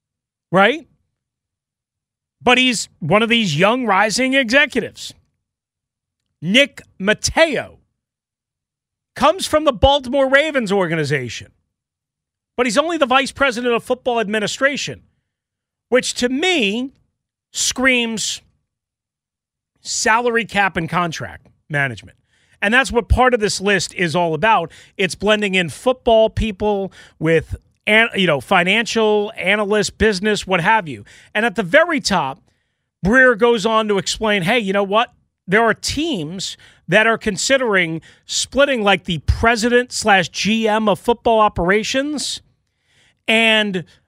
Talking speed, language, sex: 125 wpm, English, male